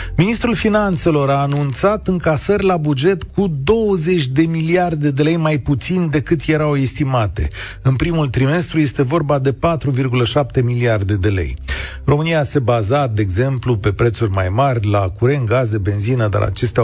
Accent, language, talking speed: native, Romanian, 155 wpm